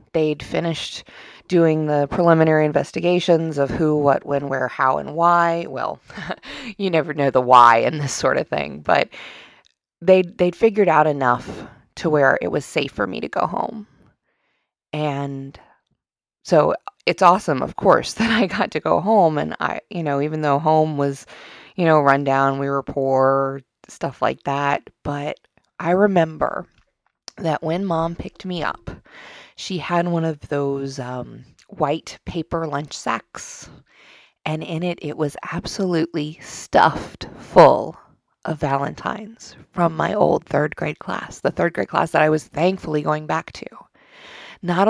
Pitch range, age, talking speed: 140-175 Hz, 30-49, 160 wpm